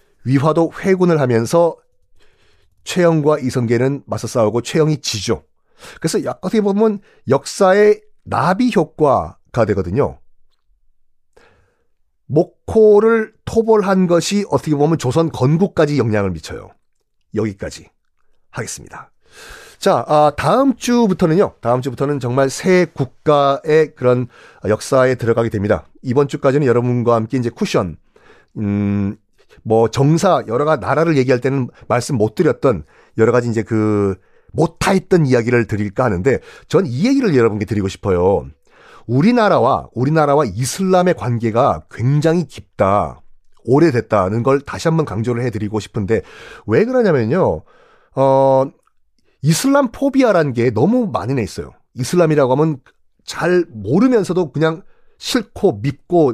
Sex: male